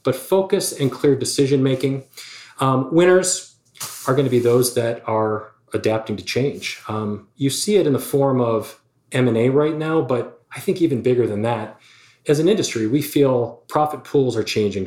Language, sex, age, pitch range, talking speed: English, male, 40-59, 110-145 Hz, 180 wpm